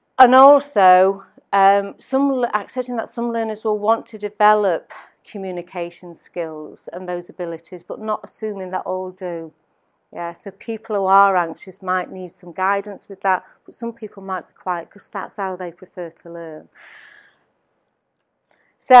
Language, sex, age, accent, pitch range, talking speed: English, female, 40-59, British, 170-210 Hz, 150 wpm